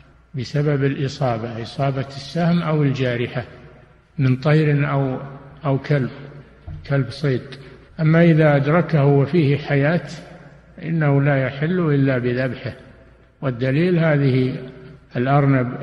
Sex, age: male, 60-79